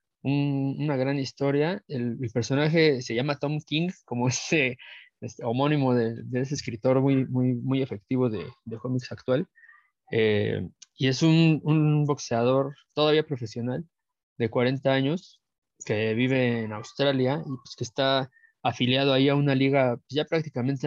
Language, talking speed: Spanish, 150 wpm